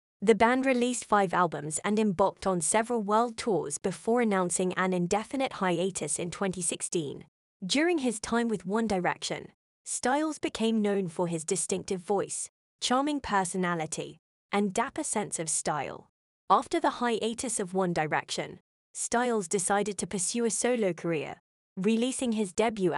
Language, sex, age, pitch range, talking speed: English, female, 20-39, 180-235 Hz, 140 wpm